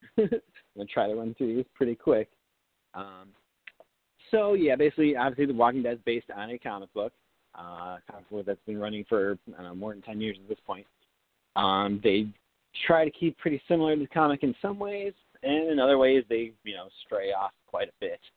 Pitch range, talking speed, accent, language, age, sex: 110-165 Hz, 205 wpm, American, English, 30-49, male